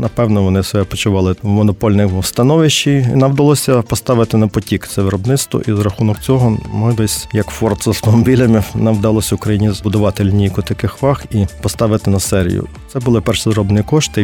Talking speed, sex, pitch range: 175 wpm, male, 100-115 Hz